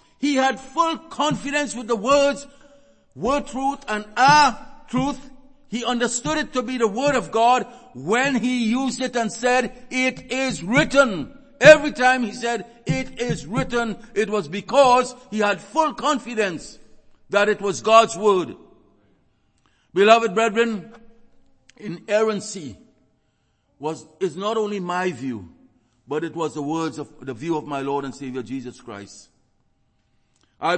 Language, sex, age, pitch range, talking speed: English, male, 60-79, 165-250 Hz, 145 wpm